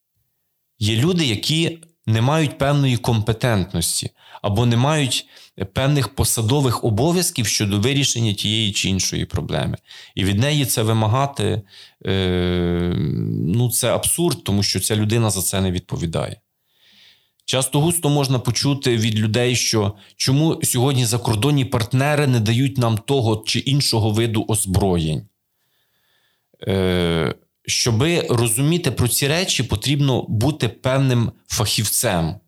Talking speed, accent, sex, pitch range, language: 115 wpm, native, male, 105-135 Hz, Ukrainian